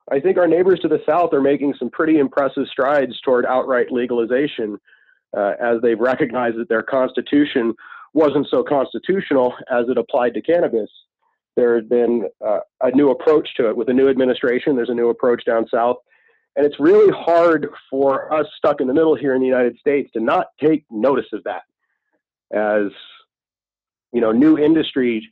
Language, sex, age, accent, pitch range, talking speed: English, male, 40-59, American, 115-155 Hz, 180 wpm